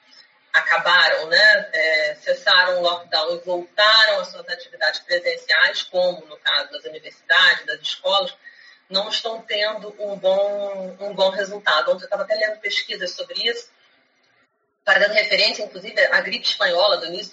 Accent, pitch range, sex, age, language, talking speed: Brazilian, 175-275 Hz, female, 30-49, Portuguese, 140 wpm